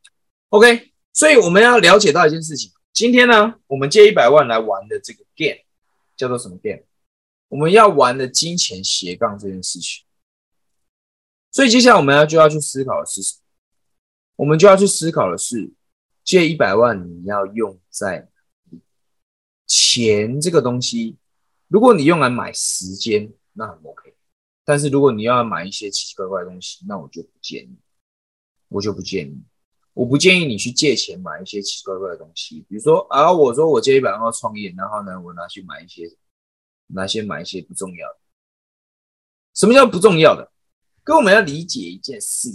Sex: male